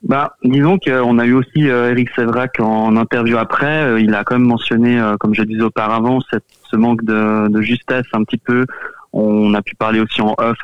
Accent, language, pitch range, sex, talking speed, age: French, French, 105-125 Hz, male, 205 wpm, 20-39